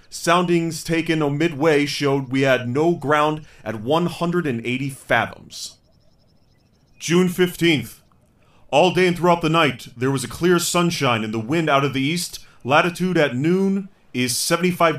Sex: male